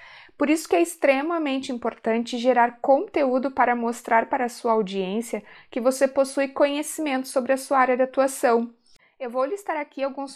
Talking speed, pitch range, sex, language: 170 wpm, 230-280 Hz, female, Portuguese